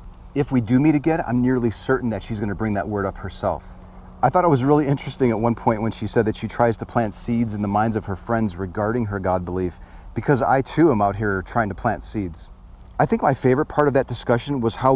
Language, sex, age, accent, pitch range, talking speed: English, male, 40-59, American, 100-125 Hz, 260 wpm